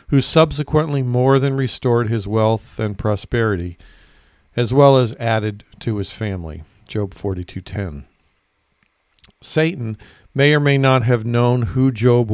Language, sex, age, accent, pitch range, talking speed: English, male, 50-69, American, 105-130 Hz, 130 wpm